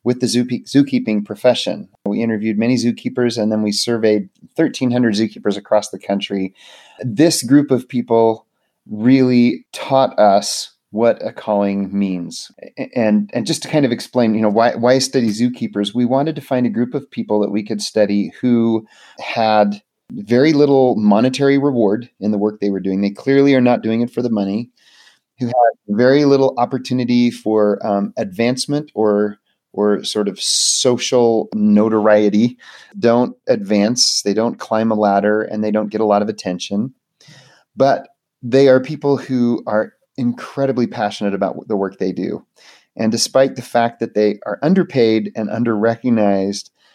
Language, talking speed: English, 165 wpm